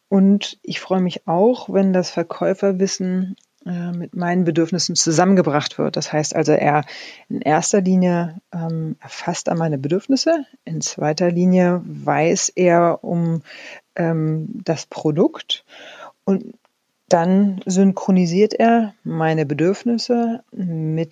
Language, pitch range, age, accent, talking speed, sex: German, 165-220 Hz, 40-59, German, 115 wpm, female